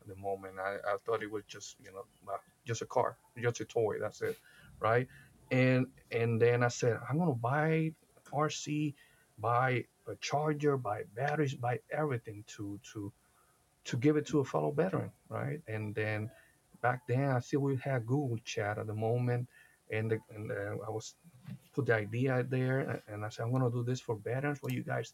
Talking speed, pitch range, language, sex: 195 wpm, 110-145 Hz, French, male